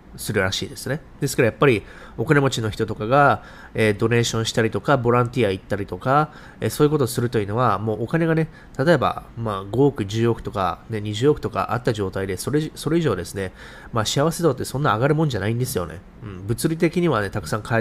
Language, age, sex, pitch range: Japanese, 20-39, male, 110-145 Hz